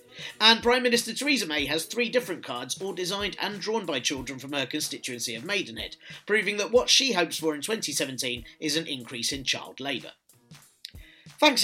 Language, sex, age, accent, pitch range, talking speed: English, male, 30-49, British, 135-180 Hz, 180 wpm